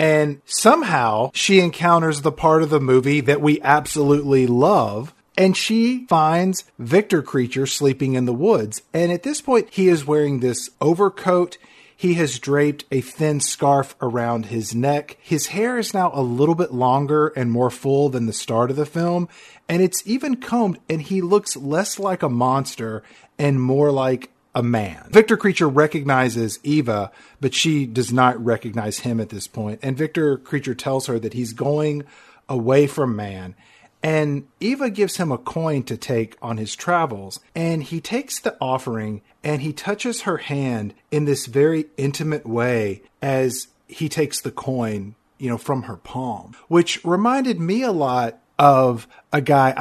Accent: American